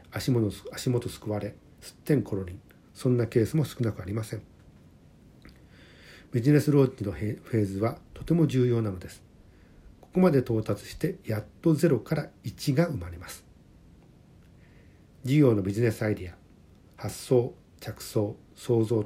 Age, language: 50-69, Japanese